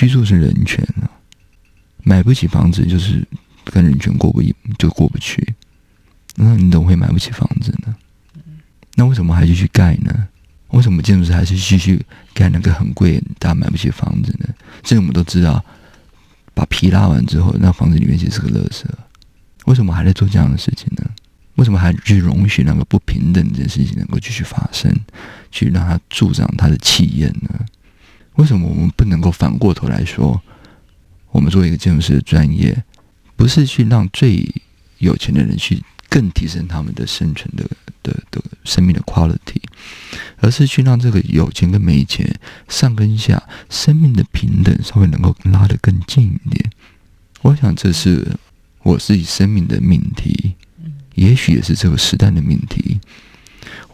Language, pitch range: Chinese, 90-120 Hz